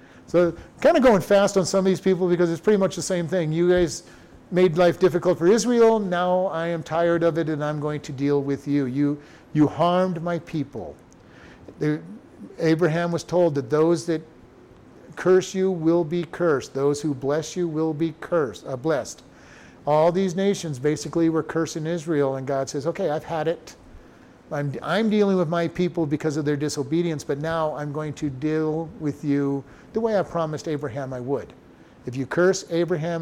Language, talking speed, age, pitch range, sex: English, 190 wpm, 50-69, 150-180 Hz, male